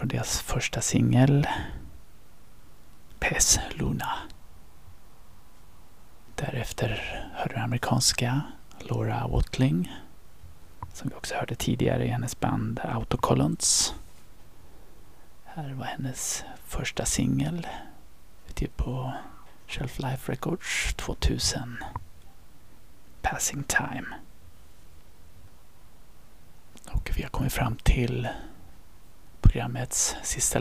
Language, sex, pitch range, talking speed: English, male, 80-130 Hz, 80 wpm